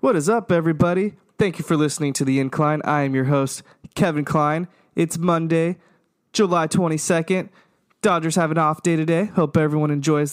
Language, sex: English, male